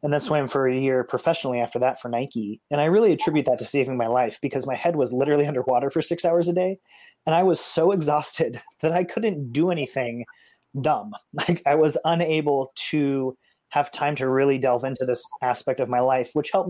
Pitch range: 125-150 Hz